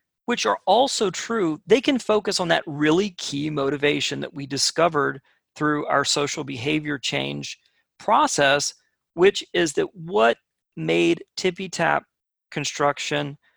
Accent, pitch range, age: American, 145-185 Hz, 40-59